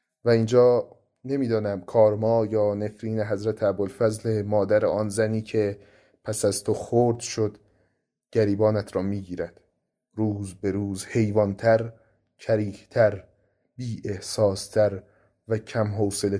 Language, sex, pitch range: Persian, male, 105-120 Hz